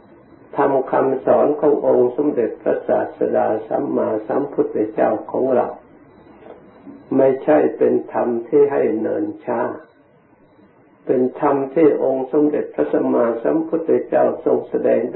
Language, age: Thai, 60-79